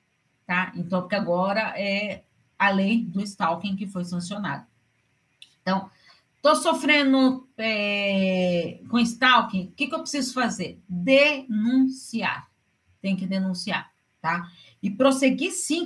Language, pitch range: Portuguese, 190-260 Hz